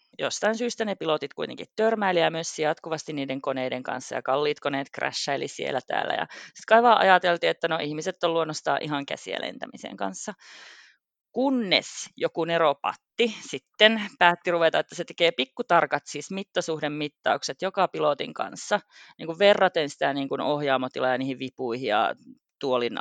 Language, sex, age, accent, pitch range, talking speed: Finnish, female, 30-49, native, 155-225 Hz, 145 wpm